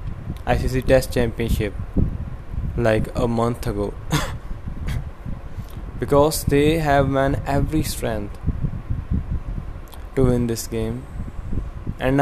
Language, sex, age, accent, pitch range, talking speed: English, male, 20-39, Indian, 110-135 Hz, 90 wpm